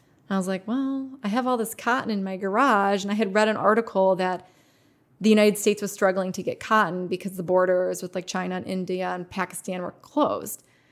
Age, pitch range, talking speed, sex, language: 20-39, 185-220 Hz, 215 wpm, female, English